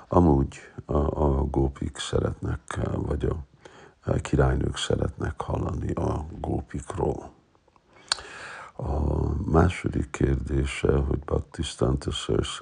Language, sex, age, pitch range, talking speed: Hungarian, male, 60-79, 70-75 Hz, 90 wpm